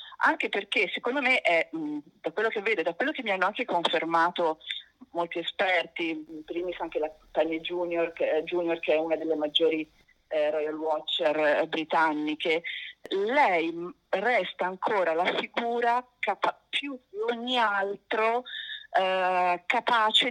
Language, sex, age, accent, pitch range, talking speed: Italian, female, 40-59, native, 165-235 Hz, 135 wpm